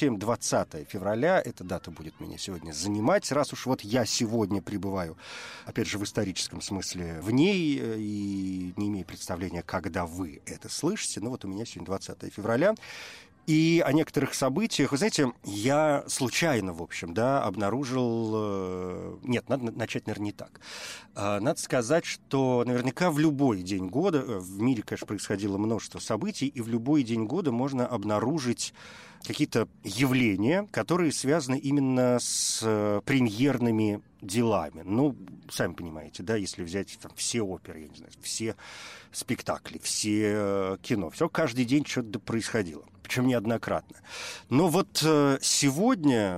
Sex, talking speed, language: male, 145 wpm, Russian